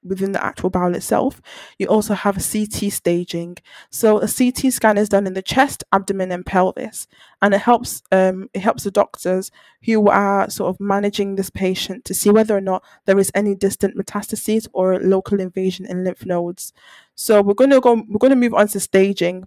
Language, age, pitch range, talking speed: English, 20-39, 185-205 Hz, 205 wpm